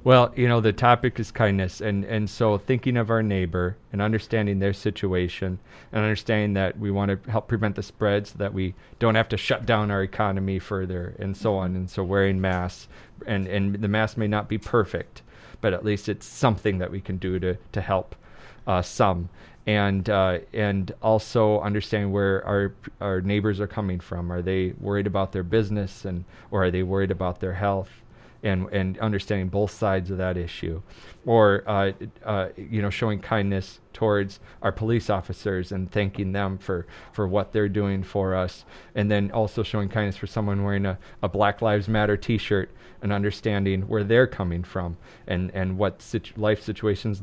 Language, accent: English, American